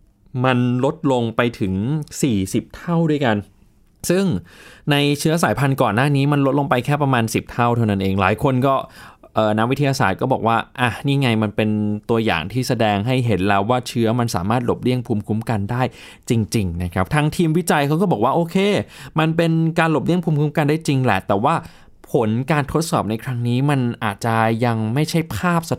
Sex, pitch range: male, 110-145 Hz